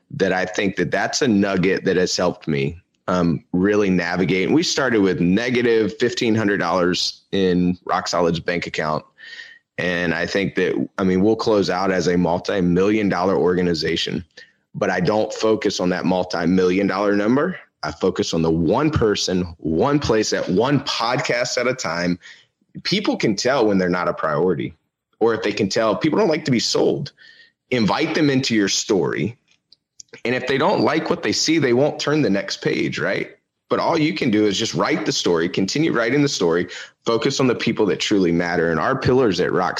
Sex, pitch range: male, 90-110 Hz